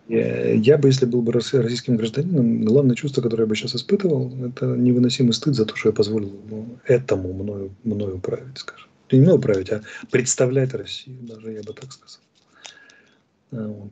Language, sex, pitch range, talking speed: Russian, male, 110-135 Hz, 160 wpm